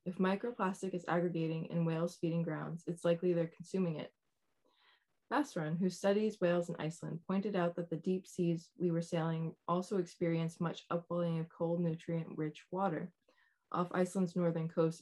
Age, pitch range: 20-39, 165-185 Hz